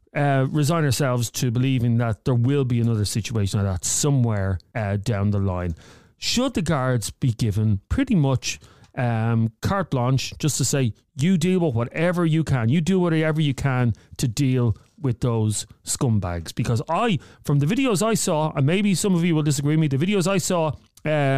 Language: English